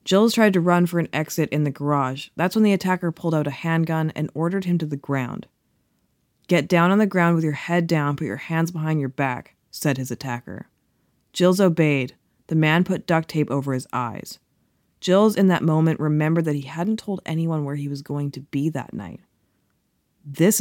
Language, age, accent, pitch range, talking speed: English, 20-39, American, 140-175 Hz, 205 wpm